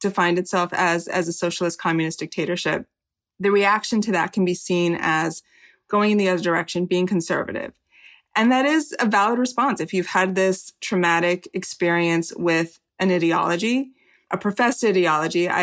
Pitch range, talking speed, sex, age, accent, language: 175-205 Hz, 155 wpm, female, 20-39, American, English